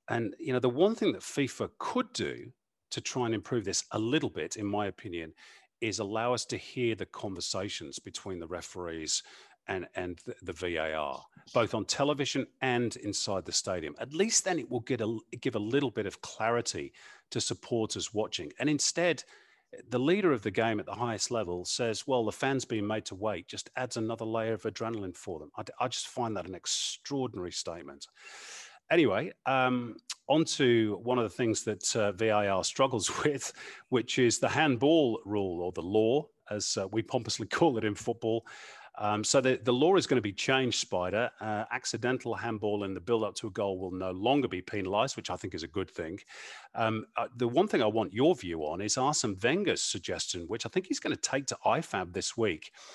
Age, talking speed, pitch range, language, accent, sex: 40-59, 200 wpm, 105-130 Hz, English, British, male